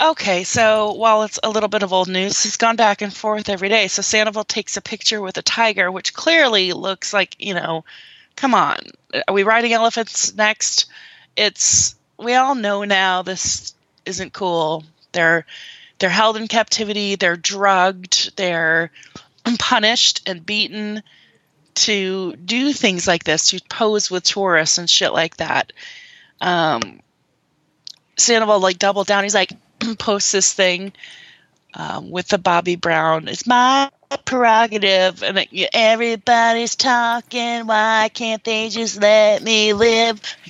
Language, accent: English, American